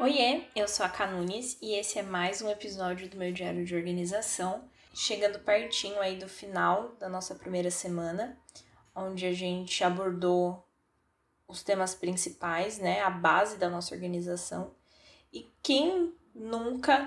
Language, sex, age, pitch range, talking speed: Portuguese, female, 20-39, 185-210 Hz, 145 wpm